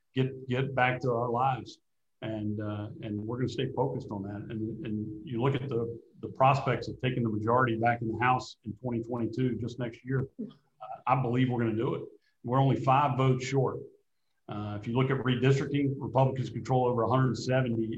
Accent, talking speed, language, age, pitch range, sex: American, 200 wpm, English, 40-59, 115-130 Hz, male